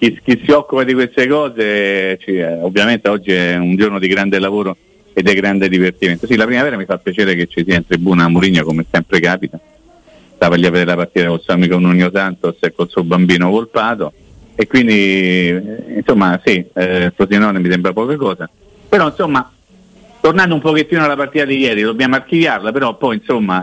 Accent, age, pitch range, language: native, 50-69, 90-125 Hz, Italian